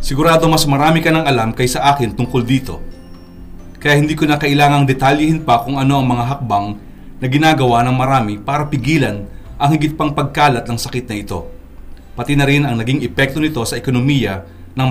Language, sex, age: Filipino, male, 30-49